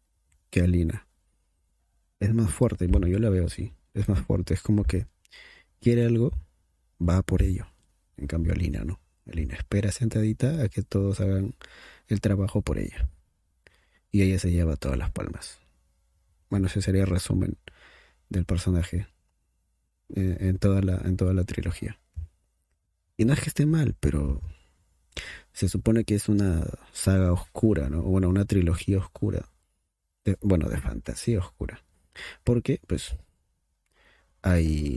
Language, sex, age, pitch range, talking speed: Spanish, male, 30-49, 75-100 Hz, 145 wpm